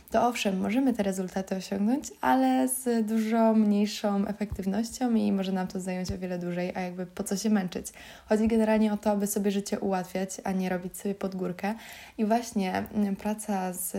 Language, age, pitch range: Polish, 20-39, 195-225 Hz